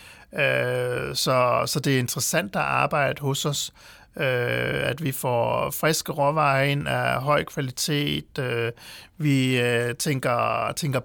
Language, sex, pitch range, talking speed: Danish, male, 125-150 Hz, 115 wpm